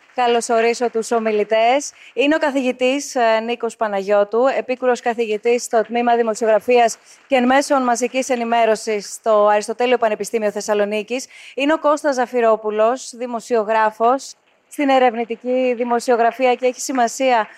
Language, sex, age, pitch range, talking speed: Greek, female, 20-39, 220-255 Hz, 115 wpm